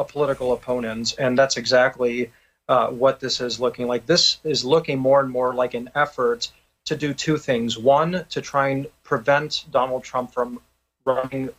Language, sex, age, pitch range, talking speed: English, male, 30-49, 125-145 Hz, 170 wpm